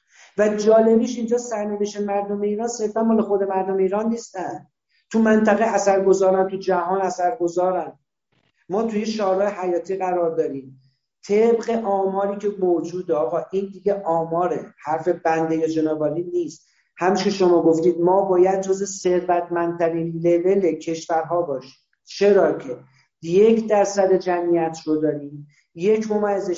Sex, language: male, Persian